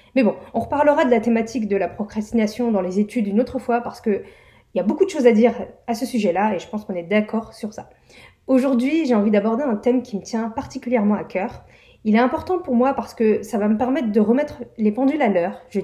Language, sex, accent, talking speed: French, female, French, 250 wpm